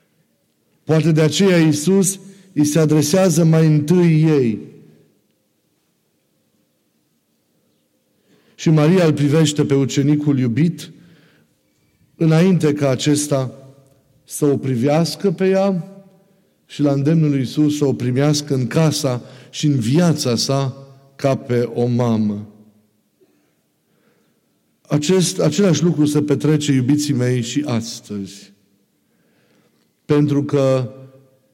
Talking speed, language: 105 wpm, Romanian